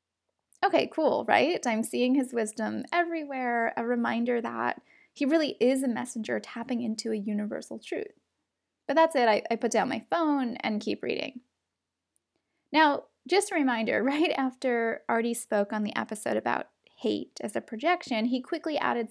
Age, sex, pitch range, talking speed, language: 10-29, female, 230-290 Hz, 165 wpm, English